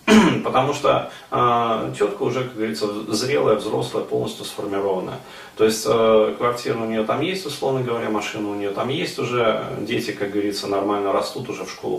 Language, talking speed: Russian, 175 wpm